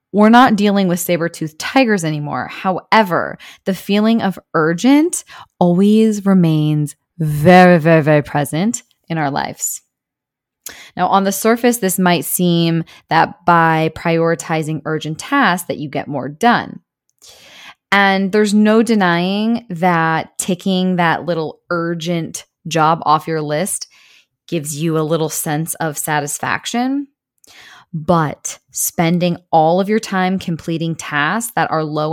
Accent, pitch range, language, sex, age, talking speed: American, 160-200 Hz, English, female, 20-39, 130 wpm